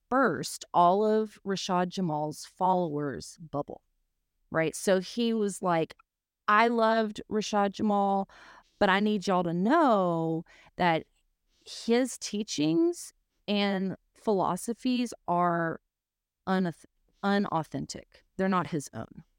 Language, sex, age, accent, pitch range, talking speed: English, female, 30-49, American, 175-225 Hz, 105 wpm